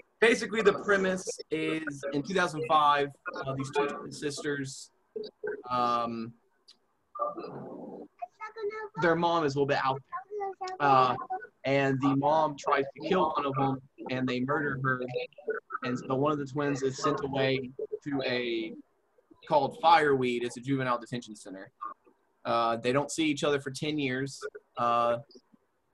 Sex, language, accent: male, English, American